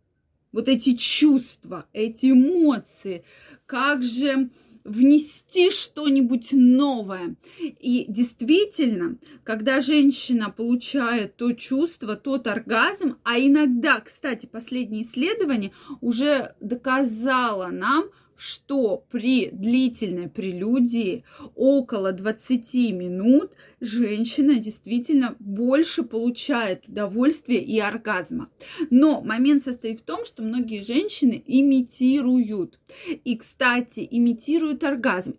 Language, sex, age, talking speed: Russian, female, 20-39, 90 wpm